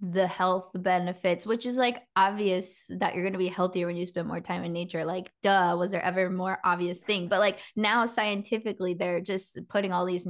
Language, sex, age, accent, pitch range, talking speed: English, female, 20-39, American, 180-200 Hz, 215 wpm